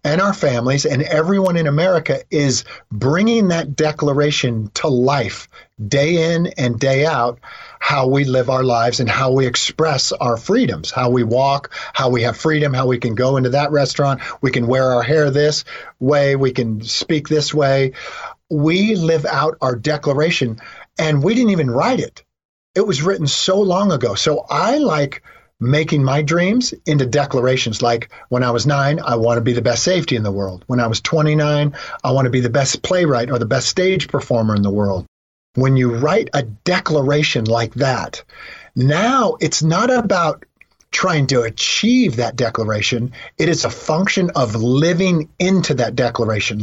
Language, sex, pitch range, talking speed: English, male, 125-160 Hz, 180 wpm